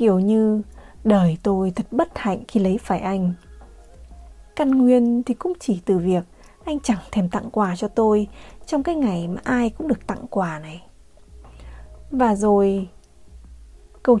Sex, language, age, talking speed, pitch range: female, Vietnamese, 20-39, 160 wpm, 185-245 Hz